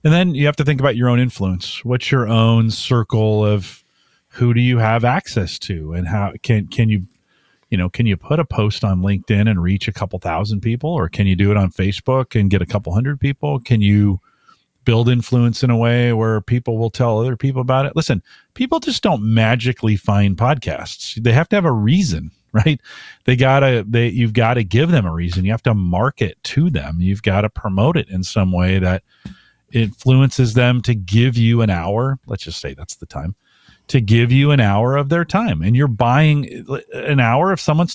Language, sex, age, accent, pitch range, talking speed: English, male, 40-59, American, 100-135 Hz, 220 wpm